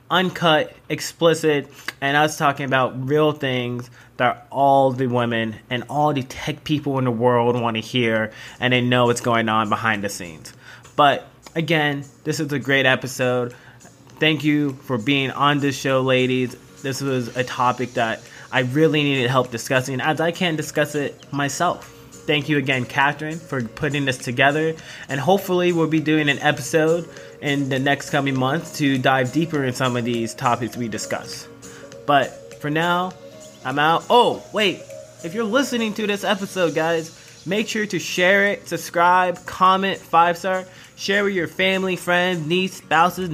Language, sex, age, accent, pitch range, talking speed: English, male, 20-39, American, 130-165 Hz, 170 wpm